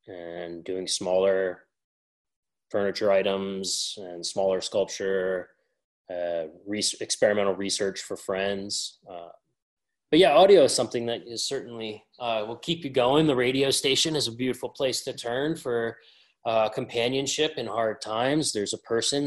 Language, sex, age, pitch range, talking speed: English, male, 20-39, 95-115 Hz, 145 wpm